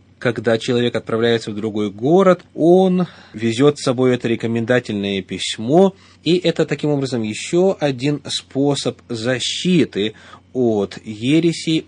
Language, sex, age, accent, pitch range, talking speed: Russian, male, 30-49, native, 105-145 Hz, 115 wpm